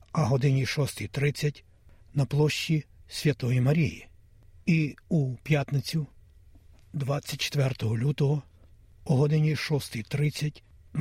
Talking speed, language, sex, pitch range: 95 wpm, Ukrainian, male, 105-145 Hz